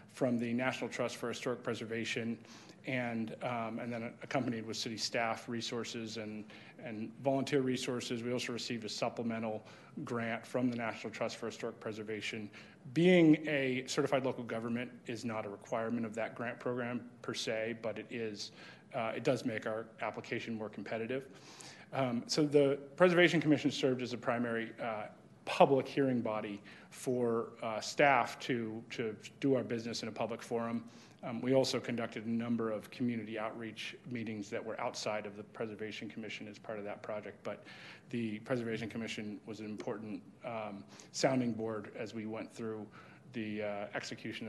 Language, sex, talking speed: English, male, 165 wpm